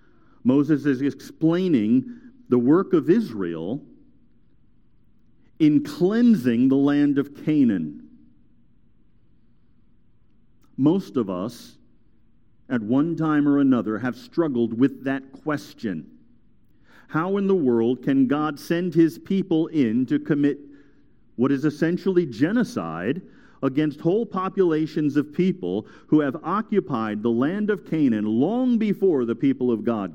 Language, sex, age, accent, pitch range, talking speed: English, male, 50-69, American, 125-190 Hz, 120 wpm